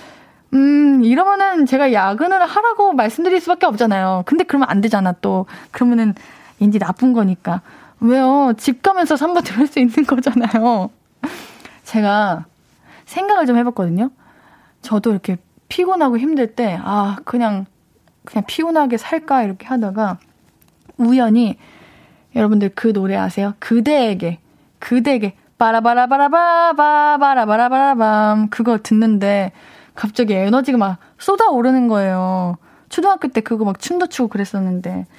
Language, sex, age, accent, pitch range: Korean, female, 20-39, native, 200-275 Hz